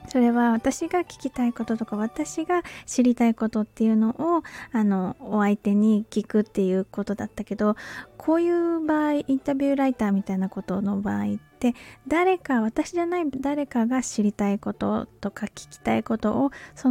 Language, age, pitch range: Japanese, 20-39, 210-270 Hz